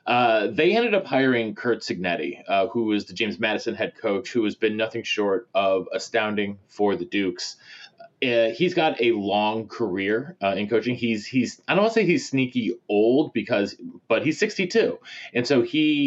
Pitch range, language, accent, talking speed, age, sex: 100-125 Hz, English, American, 190 wpm, 20-39, male